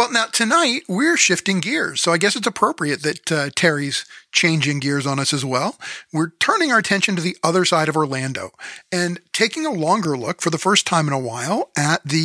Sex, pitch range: male, 150-195 Hz